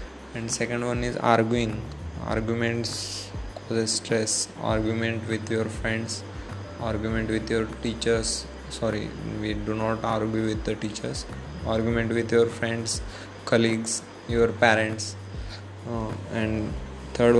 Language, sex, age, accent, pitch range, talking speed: English, male, 20-39, Indian, 110-120 Hz, 115 wpm